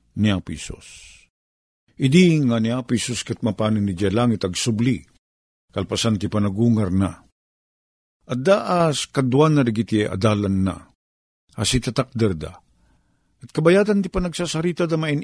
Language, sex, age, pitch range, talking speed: Filipino, male, 50-69, 110-170 Hz, 105 wpm